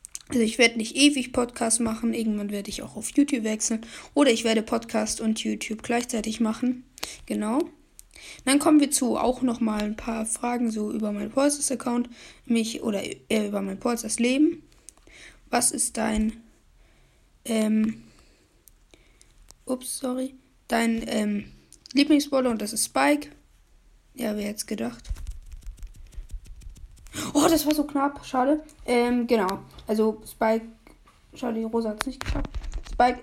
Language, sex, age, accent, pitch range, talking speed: German, female, 20-39, German, 220-260 Hz, 145 wpm